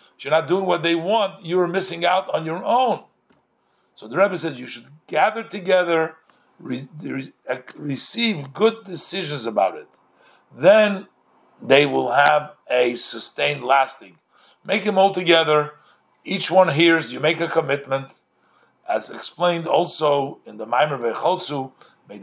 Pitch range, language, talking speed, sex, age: 140-180 Hz, English, 150 wpm, male, 50-69